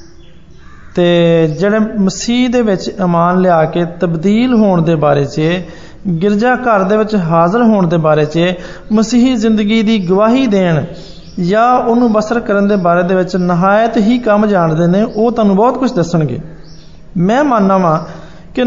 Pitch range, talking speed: 170-225 Hz, 115 wpm